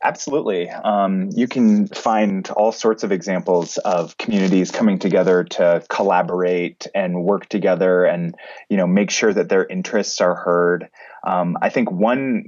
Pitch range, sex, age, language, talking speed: 90-110 Hz, male, 20-39, English, 155 wpm